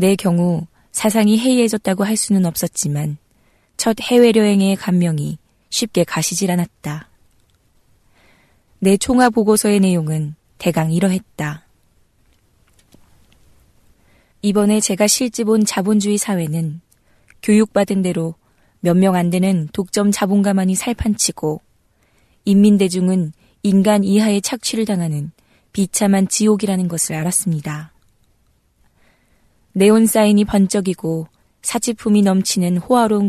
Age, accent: 20-39, native